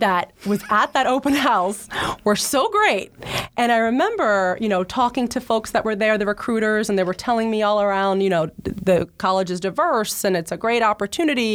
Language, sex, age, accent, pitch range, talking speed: English, female, 30-49, American, 175-215 Hz, 210 wpm